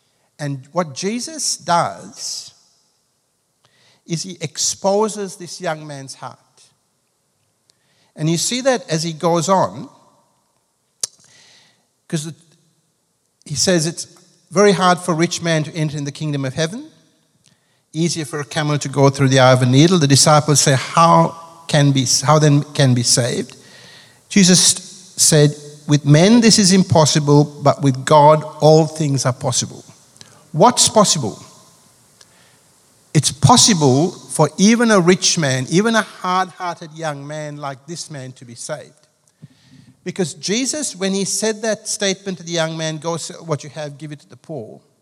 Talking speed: 150 wpm